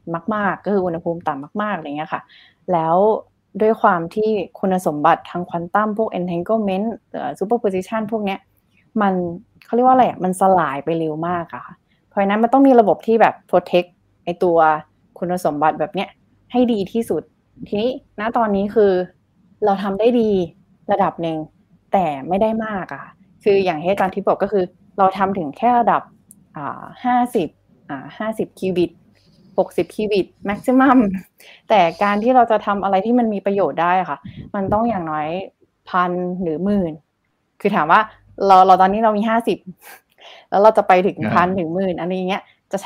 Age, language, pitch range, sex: 20-39, Thai, 175-215 Hz, female